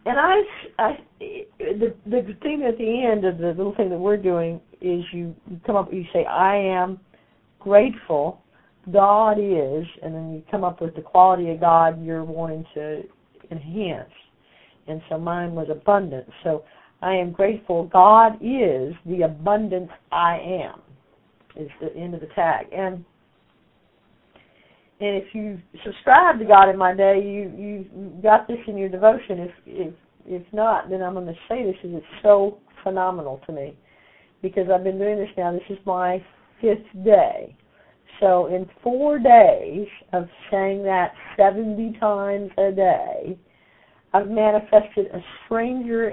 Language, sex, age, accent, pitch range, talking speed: English, female, 50-69, American, 170-210 Hz, 155 wpm